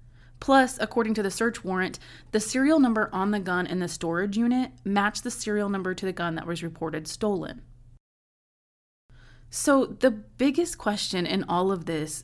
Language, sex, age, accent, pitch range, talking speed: English, female, 20-39, American, 175-225 Hz, 170 wpm